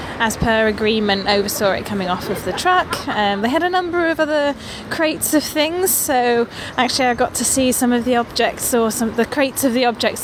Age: 20-39